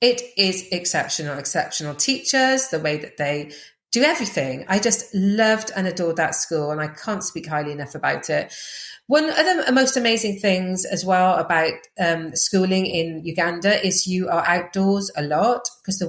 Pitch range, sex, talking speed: 160-195 Hz, female, 175 wpm